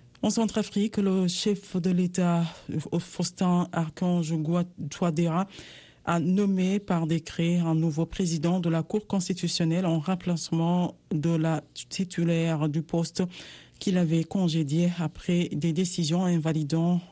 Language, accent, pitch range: Italian, French, 160-180 Hz